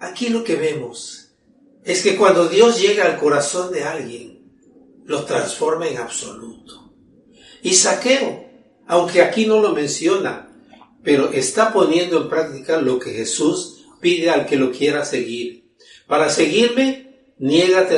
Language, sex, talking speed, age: English, male, 135 wpm, 60-79